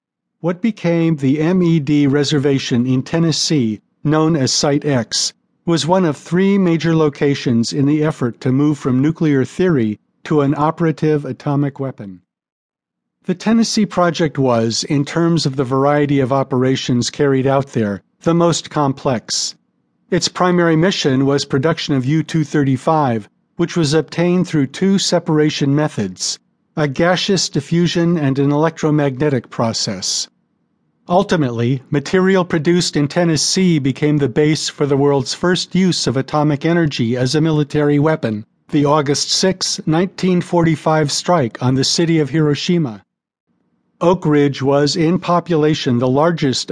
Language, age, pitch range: English, 50-69, 135-170 Hz